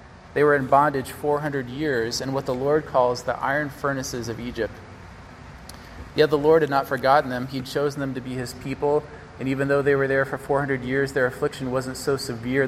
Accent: American